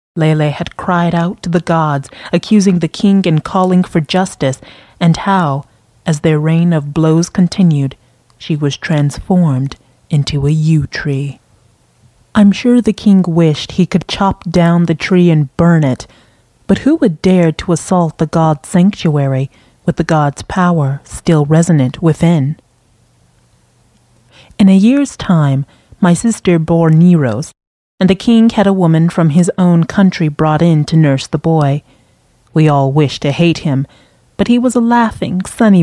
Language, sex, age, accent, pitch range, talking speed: English, female, 30-49, American, 145-180 Hz, 160 wpm